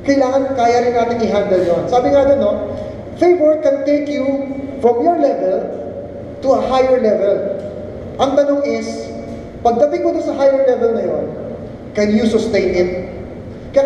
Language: English